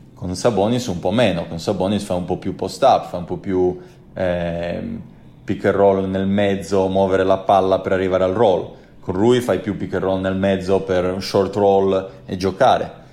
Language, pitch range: Italian, 90-105 Hz